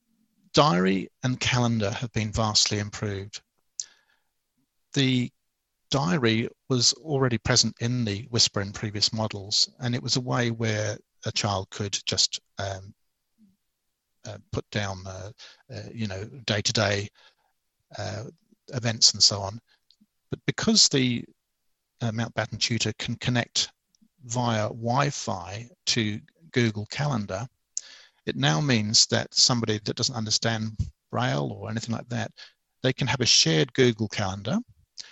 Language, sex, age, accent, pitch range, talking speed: English, male, 50-69, British, 105-130 Hz, 125 wpm